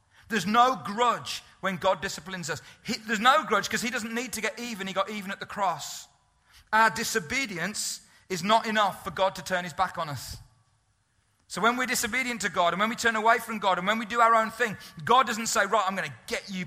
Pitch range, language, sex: 175-230 Hz, English, male